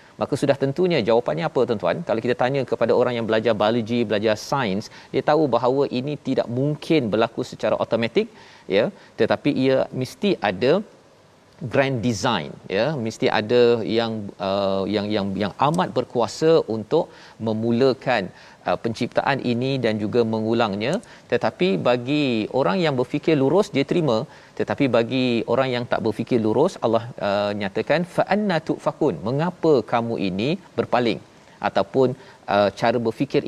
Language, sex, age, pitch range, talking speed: Malayalam, male, 40-59, 110-140 Hz, 140 wpm